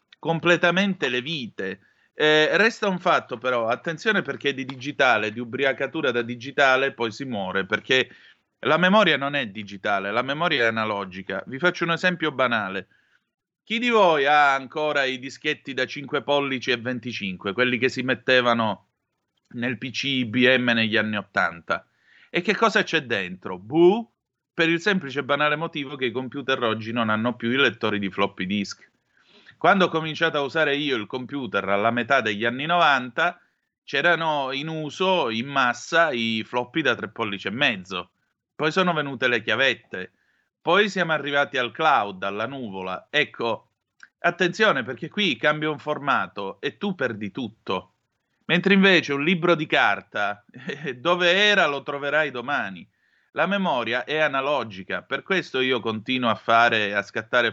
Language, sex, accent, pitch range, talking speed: Italian, male, native, 115-160 Hz, 155 wpm